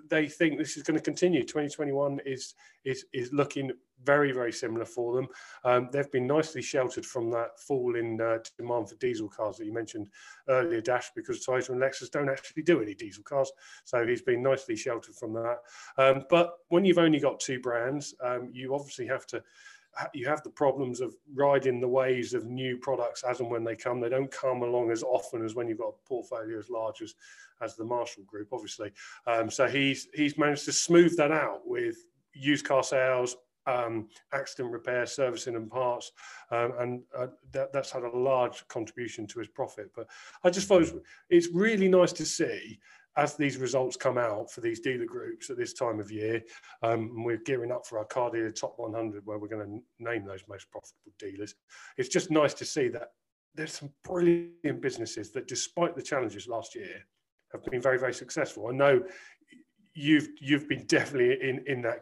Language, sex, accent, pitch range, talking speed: English, male, British, 125-190 Hz, 200 wpm